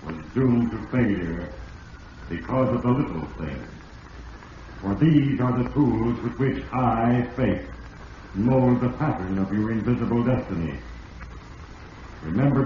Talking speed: 125 wpm